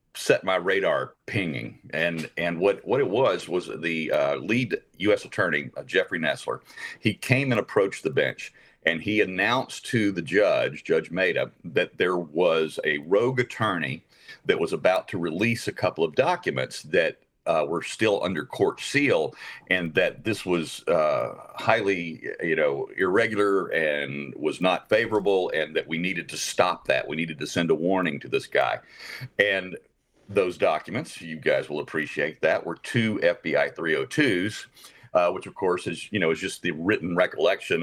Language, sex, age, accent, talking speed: English, male, 50-69, American, 170 wpm